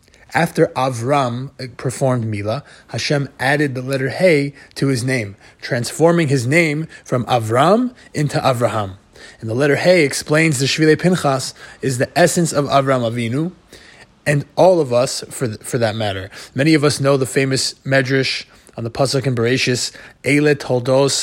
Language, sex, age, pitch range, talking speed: English, male, 20-39, 125-150 Hz, 155 wpm